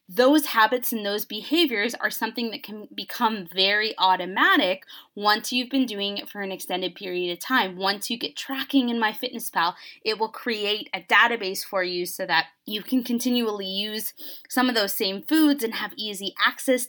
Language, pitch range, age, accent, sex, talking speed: English, 200-255 Hz, 20-39, American, female, 180 wpm